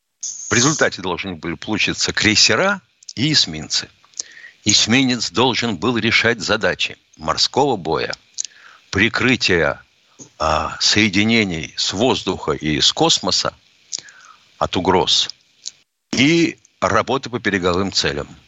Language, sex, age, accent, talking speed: Russian, male, 60-79, native, 95 wpm